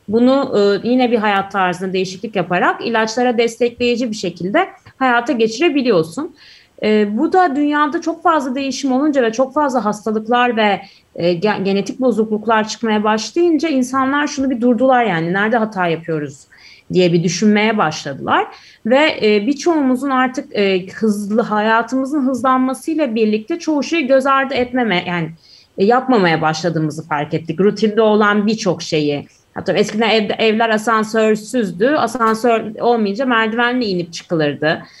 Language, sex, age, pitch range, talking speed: Turkish, female, 30-49, 205-265 Hz, 130 wpm